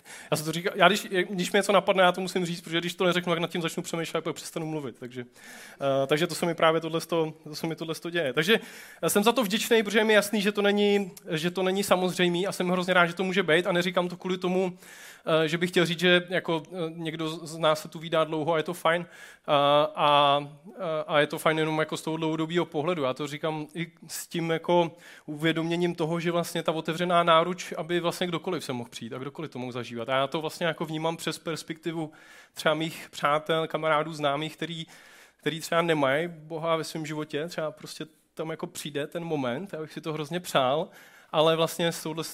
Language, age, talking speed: Czech, 20-39, 215 wpm